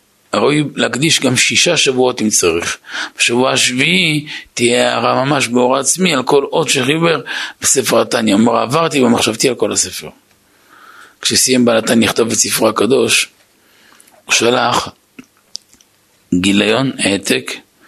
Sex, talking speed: male, 125 wpm